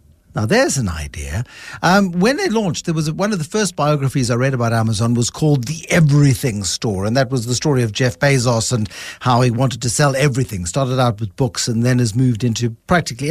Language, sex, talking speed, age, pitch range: English, male, 220 wpm, 60-79, 125-180 Hz